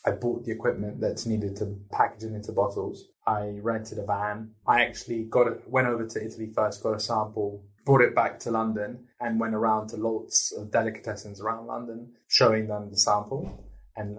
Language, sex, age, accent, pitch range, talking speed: English, male, 20-39, British, 100-110 Hz, 195 wpm